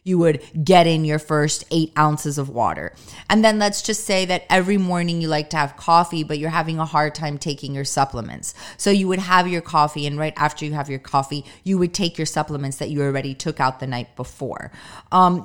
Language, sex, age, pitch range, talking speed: English, female, 30-49, 150-190 Hz, 230 wpm